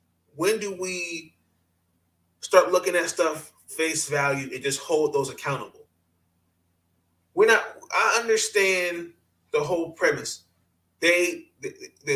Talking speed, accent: 115 wpm, American